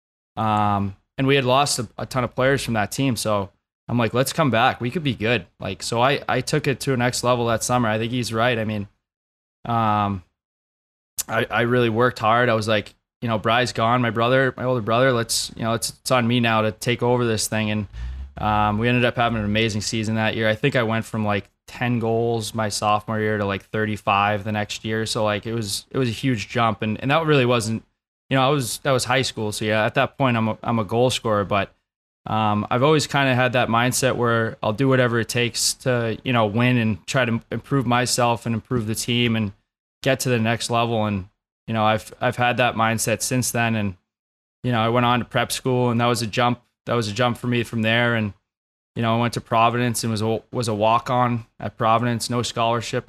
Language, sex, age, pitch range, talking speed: English, male, 20-39, 110-125 Hz, 245 wpm